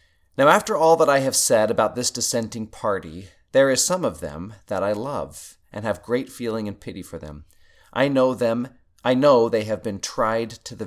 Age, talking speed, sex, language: 40-59, 210 wpm, male, English